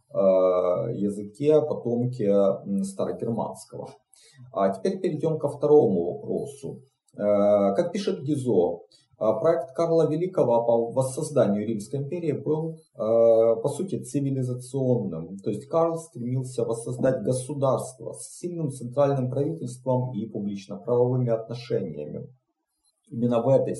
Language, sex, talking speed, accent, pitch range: Russian, male, 100 wpm, native, 105-135 Hz